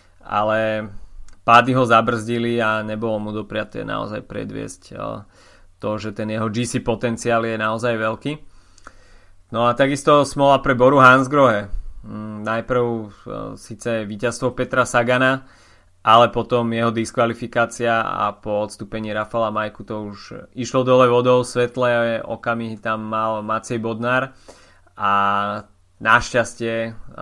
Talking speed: 115 wpm